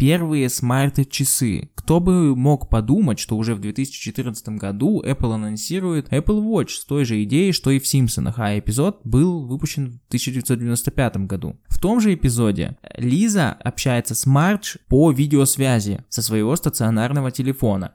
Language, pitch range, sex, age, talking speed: Russian, 110-150 Hz, male, 20-39, 145 wpm